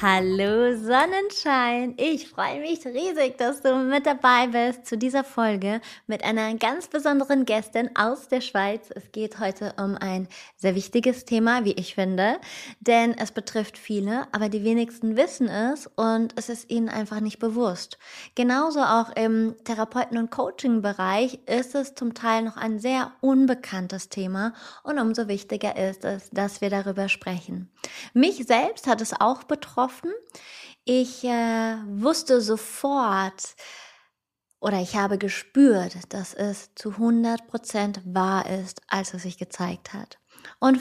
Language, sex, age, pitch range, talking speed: German, female, 20-39, 210-255 Hz, 145 wpm